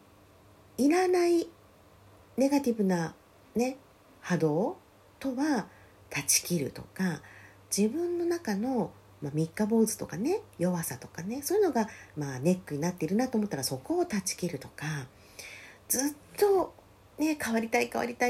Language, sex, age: Japanese, female, 40-59